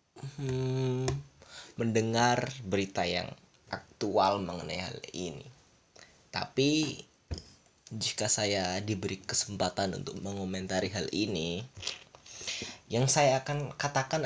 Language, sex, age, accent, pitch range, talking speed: English, male, 20-39, Indonesian, 105-135 Hz, 90 wpm